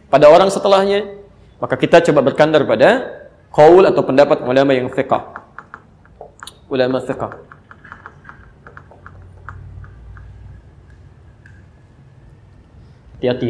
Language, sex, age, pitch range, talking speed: Indonesian, male, 30-49, 110-155 Hz, 75 wpm